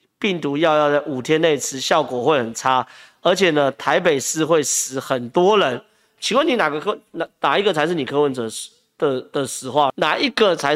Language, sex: Chinese, male